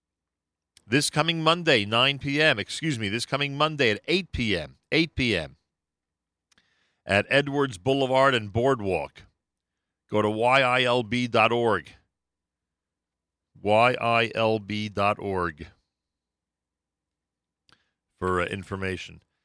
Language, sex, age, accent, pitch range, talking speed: English, male, 50-69, American, 90-125 Hz, 85 wpm